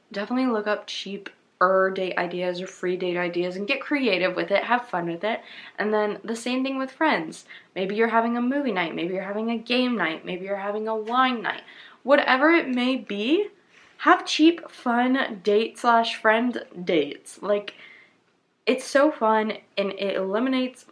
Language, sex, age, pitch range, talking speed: English, female, 20-39, 195-250 Hz, 180 wpm